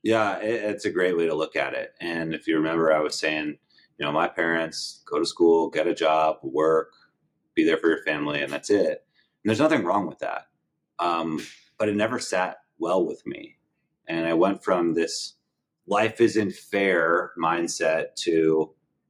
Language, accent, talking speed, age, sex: English, American, 185 wpm, 30-49, male